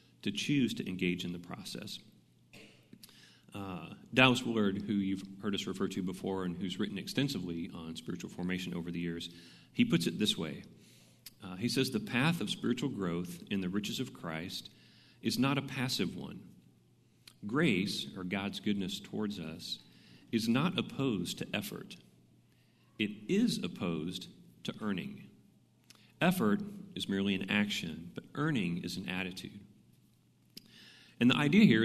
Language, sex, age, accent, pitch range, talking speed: English, male, 40-59, American, 90-115 Hz, 150 wpm